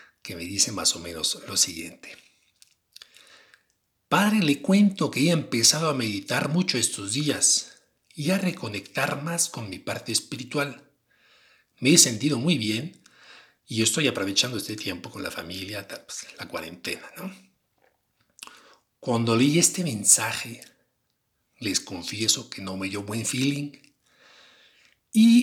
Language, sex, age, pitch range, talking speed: Spanish, male, 60-79, 120-170 Hz, 130 wpm